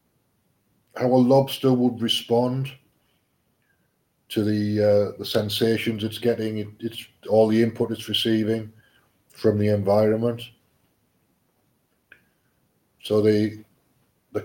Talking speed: 100 wpm